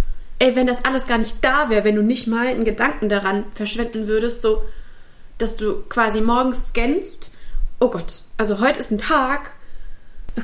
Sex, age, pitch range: female, 30-49, 210-275 Hz